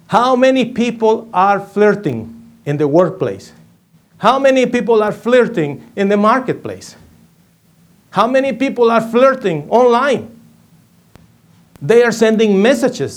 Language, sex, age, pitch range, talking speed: English, male, 50-69, 155-225 Hz, 120 wpm